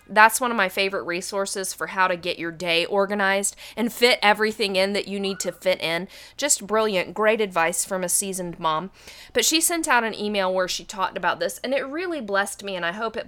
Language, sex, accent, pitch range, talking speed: English, female, American, 185-235 Hz, 230 wpm